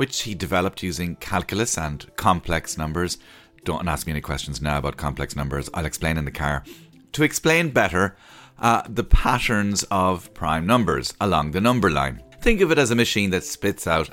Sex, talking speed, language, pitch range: male, 185 wpm, English, 80-110 Hz